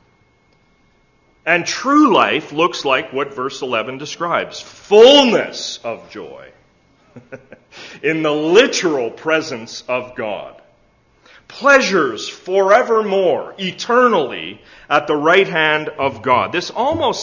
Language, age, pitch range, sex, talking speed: English, 40-59, 125-160 Hz, male, 100 wpm